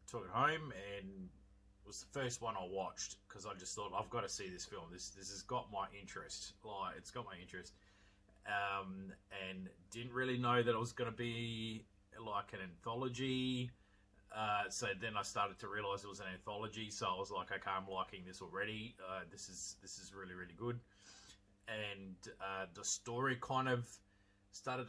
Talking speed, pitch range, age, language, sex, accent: 195 wpm, 95-115 Hz, 30-49, English, male, Australian